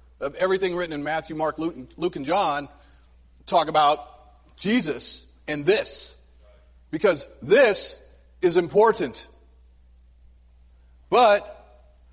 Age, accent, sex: 40-59, American, male